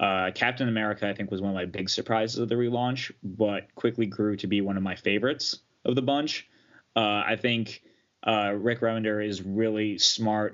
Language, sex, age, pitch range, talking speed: English, male, 20-39, 95-110 Hz, 200 wpm